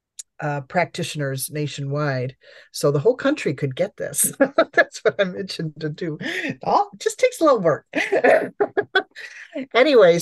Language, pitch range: English, 150-190 Hz